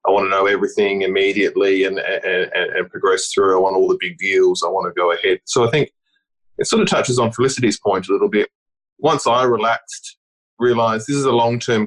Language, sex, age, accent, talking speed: English, male, 20-39, Australian, 220 wpm